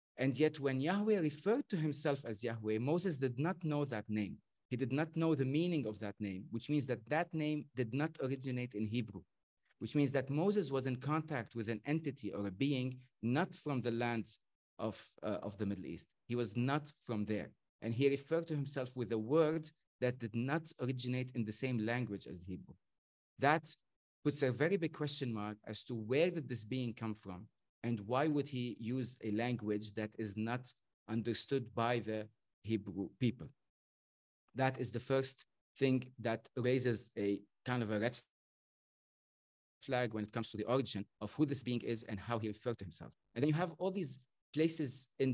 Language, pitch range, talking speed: English, 115-145 Hz, 195 wpm